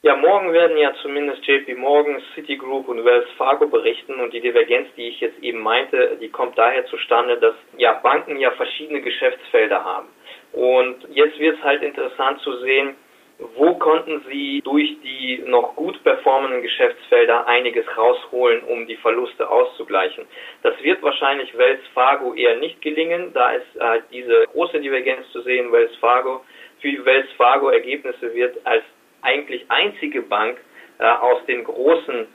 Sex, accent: male, German